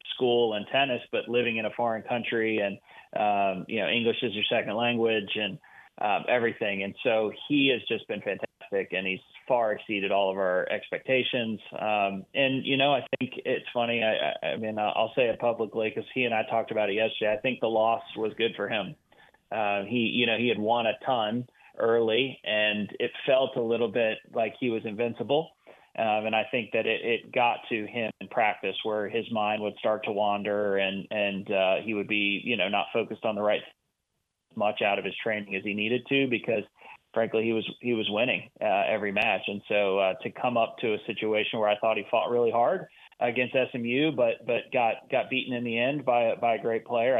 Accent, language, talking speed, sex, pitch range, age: American, English, 215 wpm, male, 105-120 Hz, 30-49